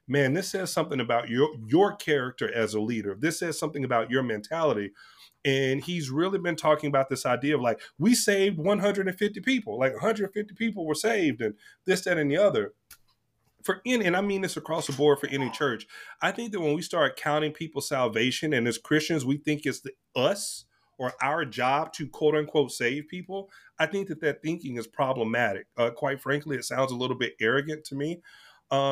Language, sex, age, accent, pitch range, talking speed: English, male, 30-49, American, 130-175 Hz, 205 wpm